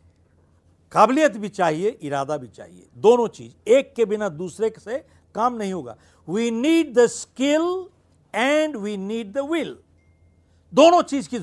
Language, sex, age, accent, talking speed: Hindi, male, 60-79, native, 145 wpm